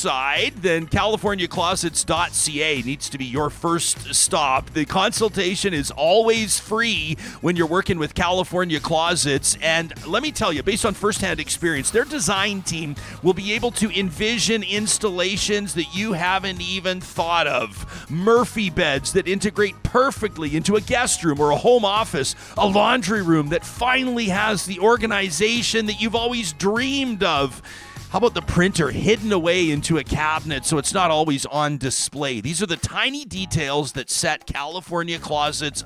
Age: 40-59